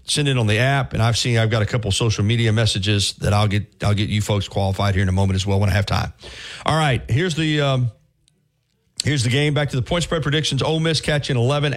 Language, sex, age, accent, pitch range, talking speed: English, male, 40-59, American, 110-150 Hz, 265 wpm